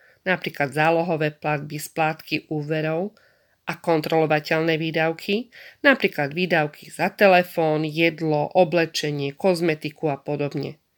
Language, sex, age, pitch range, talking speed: Slovak, female, 40-59, 150-195 Hz, 95 wpm